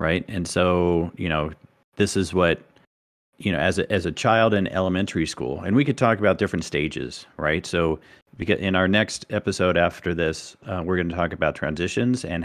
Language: English